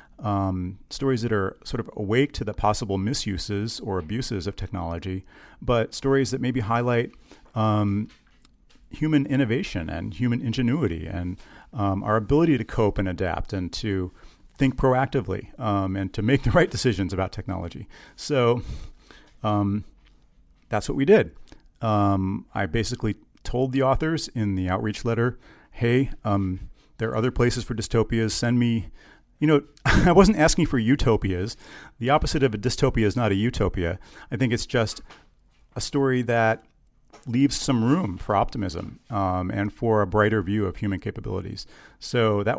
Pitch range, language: 95-125 Hz, English